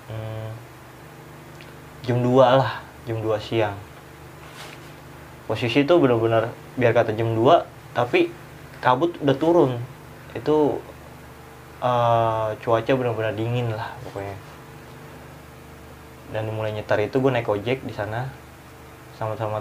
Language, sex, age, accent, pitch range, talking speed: Indonesian, male, 20-39, native, 105-130 Hz, 105 wpm